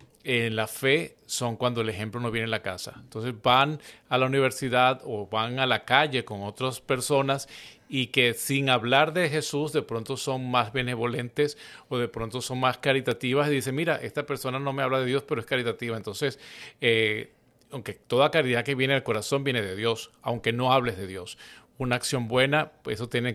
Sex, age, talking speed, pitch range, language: male, 40-59, 200 wpm, 115-135 Hz, Spanish